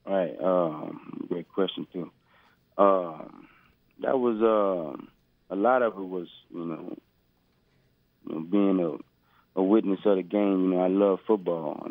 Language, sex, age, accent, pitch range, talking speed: English, male, 30-49, American, 80-100 Hz, 160 wpm